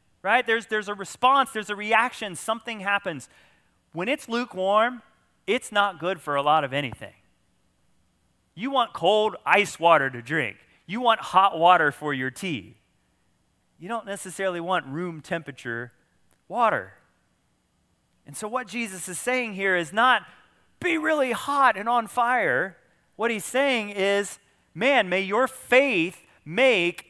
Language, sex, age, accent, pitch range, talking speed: English, male, 30-49, American, 165-230 Hz, 145 wpm